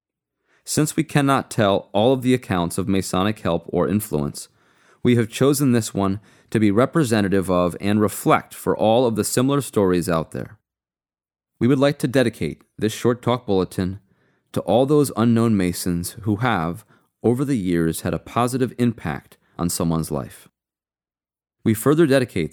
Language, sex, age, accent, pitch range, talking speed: English, male, 30-49, American, 85-125 Hz, 160 wpm